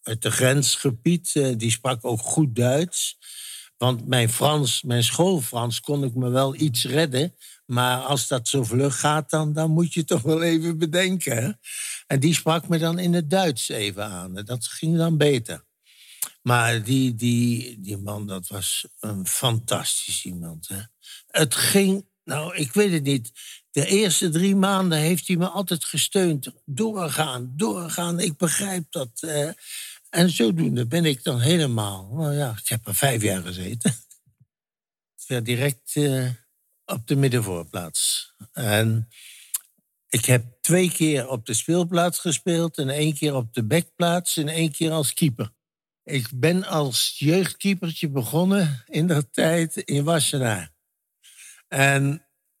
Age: 60-79